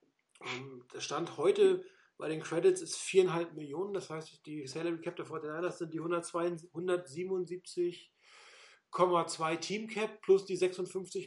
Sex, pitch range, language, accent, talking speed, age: male, 160-185 Hz, German, German, 140 wpm, 40-59